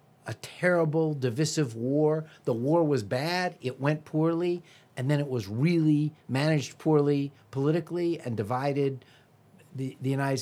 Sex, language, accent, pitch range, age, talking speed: male, English, American, 125-160 Hz, 50-69, 140 wpm